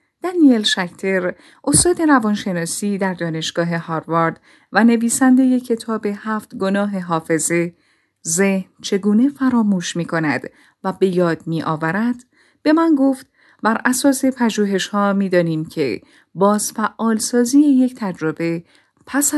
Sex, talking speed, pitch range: female, 115 wpm, 170-255 Hz